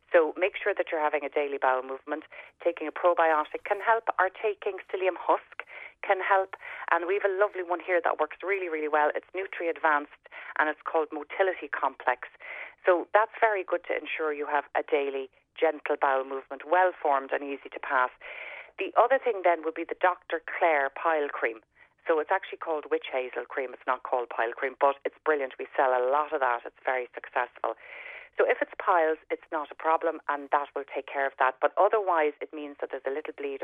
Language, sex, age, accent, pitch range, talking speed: English, female, 40-59, Irish, 140-180 Hz, 210 wpm